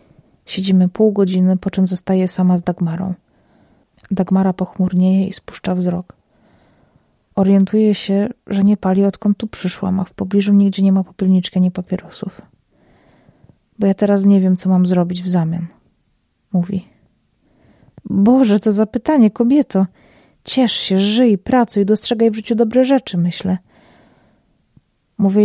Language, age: Polish, 30-49